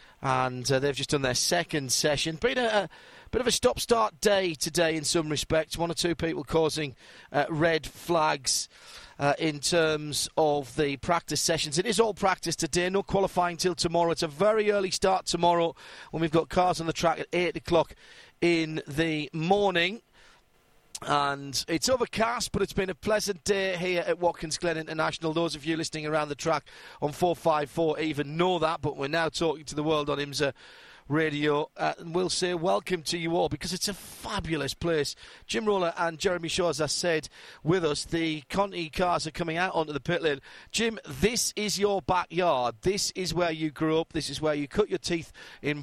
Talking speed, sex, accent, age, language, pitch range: 200 wpm, male, British, 40-59, English, 150-180 Hz